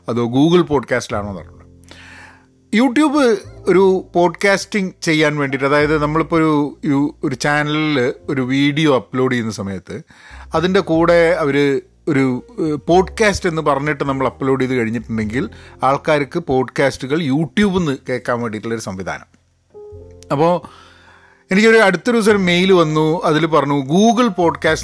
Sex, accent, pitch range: male, native, 135-180 Hz